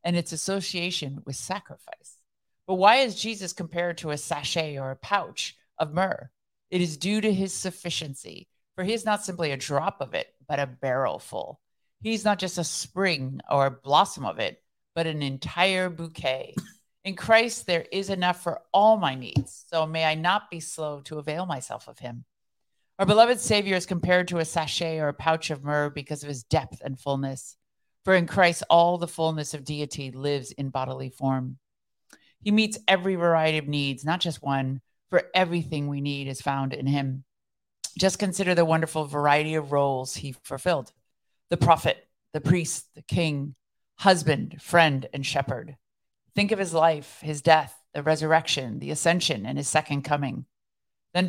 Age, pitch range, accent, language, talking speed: 50-69, 140-180 Hz, American, English, 180 wpm